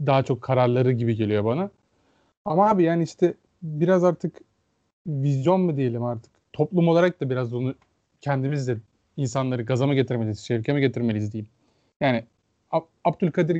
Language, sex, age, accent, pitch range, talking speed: Turkish, male, 30-49, native, 120-160 Hz, 135 wpm